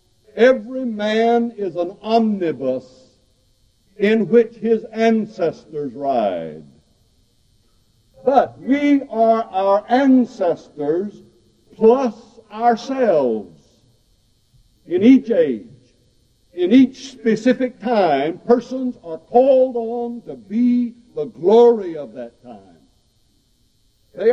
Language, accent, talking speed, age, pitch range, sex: English, American, 90 wpm, 60-79, 175-235 Hz, male